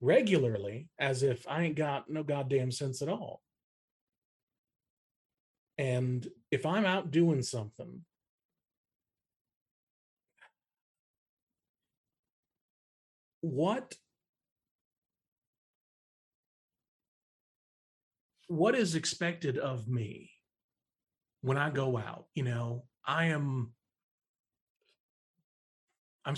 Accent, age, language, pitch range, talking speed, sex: American, 50-69, English, 120-155 Hz, 75 wpm, male